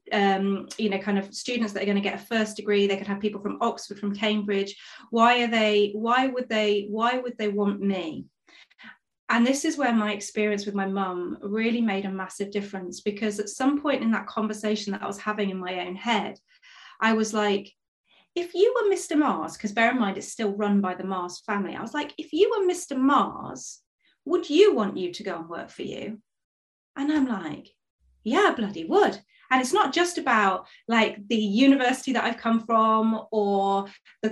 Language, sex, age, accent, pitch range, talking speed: English, female, 30-49, British, 205-285 Hz, 210 wpm